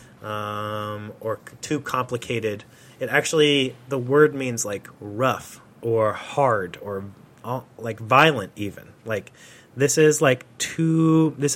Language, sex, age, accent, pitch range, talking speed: English, male, 30-49, American, 115-145 Hz, 130 wpm